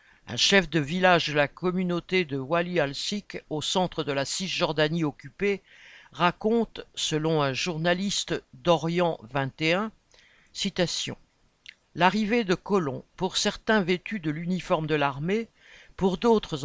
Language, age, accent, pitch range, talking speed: French, 60-79, French, 160-200 Hz, 120 wpm